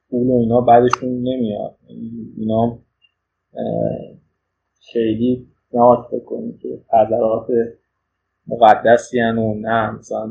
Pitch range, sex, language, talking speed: 120-150 Hz, male, Persian, 85 wpm